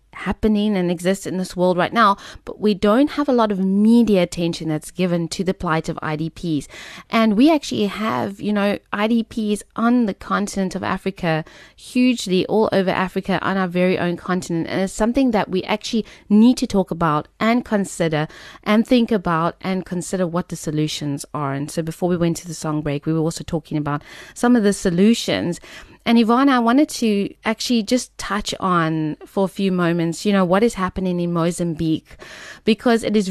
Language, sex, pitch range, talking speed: English, female, 170-210 Hz, 195 wpm